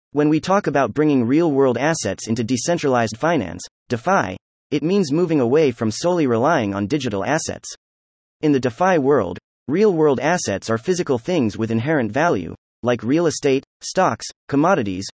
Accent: American